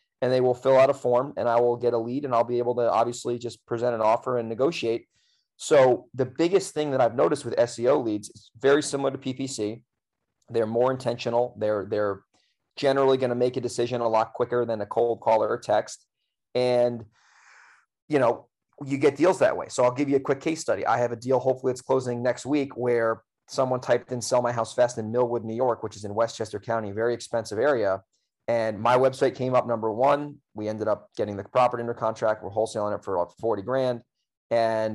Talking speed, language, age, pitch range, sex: 220 wpm, English, 30-49, 110-125 Hz, male